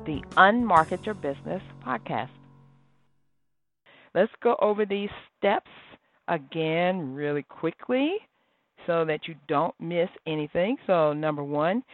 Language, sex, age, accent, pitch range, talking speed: English, female, 50-69, American, 155-215 Hz, 110 wpm